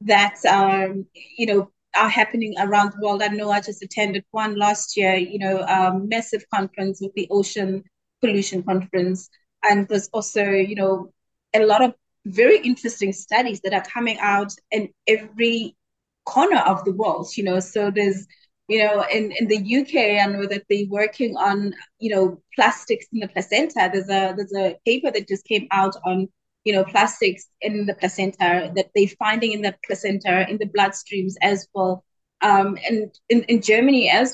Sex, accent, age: female, South African, 30-49